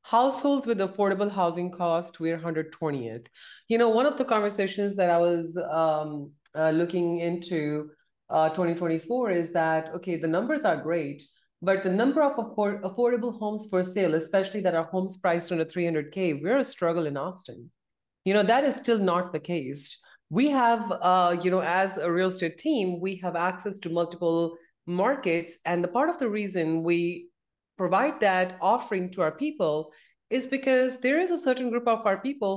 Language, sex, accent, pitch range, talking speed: English, female, Indian, 170-220 Hz, 185 wpm